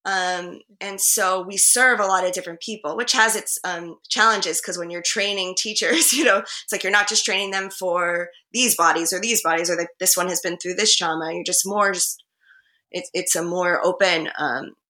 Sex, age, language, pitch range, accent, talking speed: female, 20-39, English, 170-195 Hz, American, 210 wpm